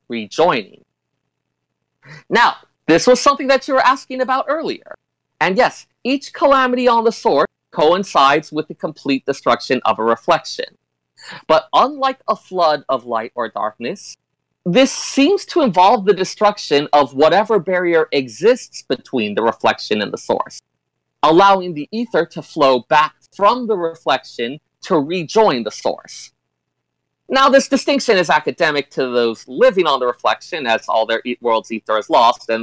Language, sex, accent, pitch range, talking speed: English, male, American, 150-250 Hz, 155 wpm